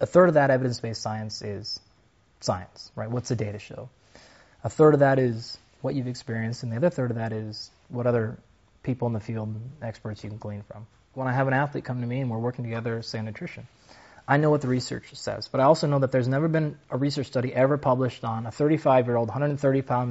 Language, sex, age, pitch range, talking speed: Hindi, male, 20-39, 115-145 Hz, 235 wpm